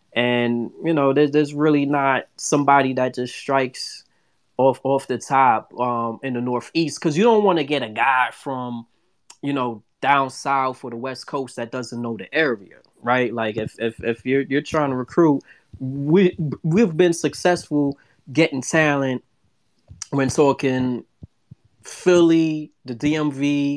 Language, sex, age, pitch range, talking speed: English, male, 20-39, 115-140 Hz, 155 wpm